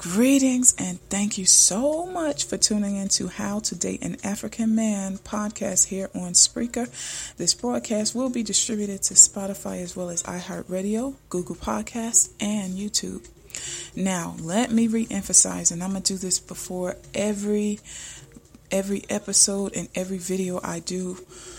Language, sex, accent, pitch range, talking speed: English, female, American, 180-210 Hz, 150 wpm